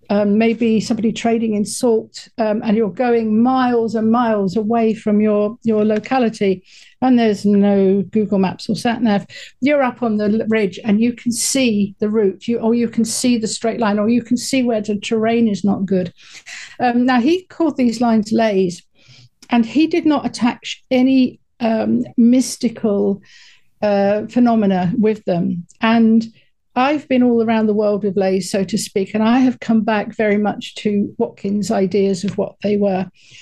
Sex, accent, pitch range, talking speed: female, British, 205-245 Hz, 180 wpm